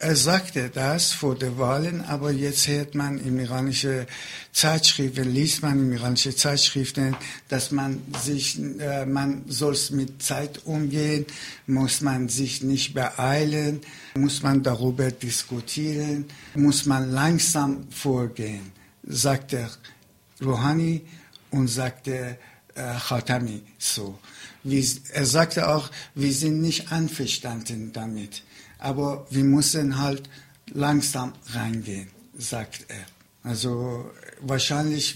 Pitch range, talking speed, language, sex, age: 130-145 Hz, 110 wpm, German, male, 60-79